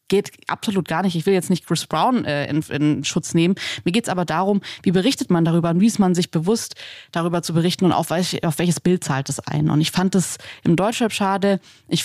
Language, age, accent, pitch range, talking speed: German, 20-39, German, 165-205 Hz, 250 wpm